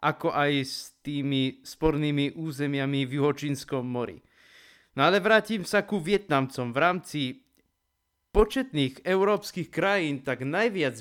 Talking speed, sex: 120 wpm, male